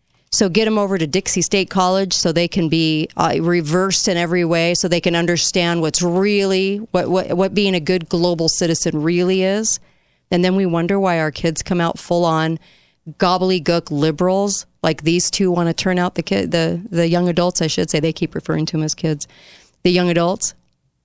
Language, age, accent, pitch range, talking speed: English, 40-59, American, 160-200 Hz, 200 wpm